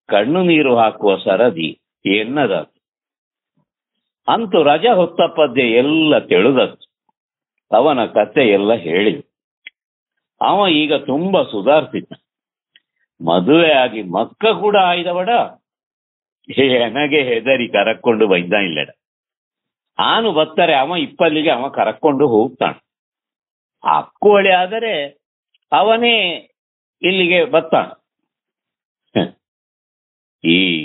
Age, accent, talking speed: 60-79, native, 75 wpm